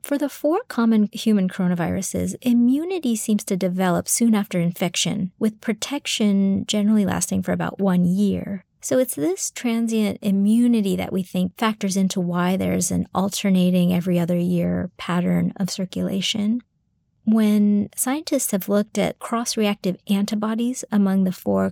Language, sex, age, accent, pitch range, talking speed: English, female, 30-49, American, 180-220 Hz, 140 wpm